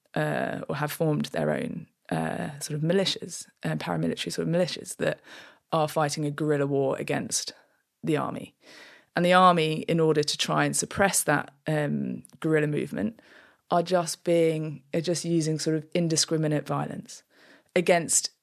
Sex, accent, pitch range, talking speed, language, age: female, British, 150-175 Hz, 155 wpm, English, 20-39